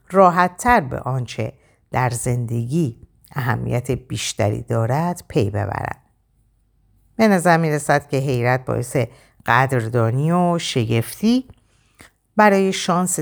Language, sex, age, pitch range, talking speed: Persian, female, 50-69, 115-170 Hz, 105 wpm